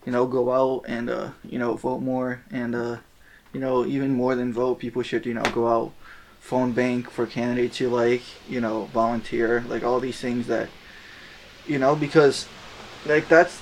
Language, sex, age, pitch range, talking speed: English, male, 20-39, 115-125 Hz, 190 wpm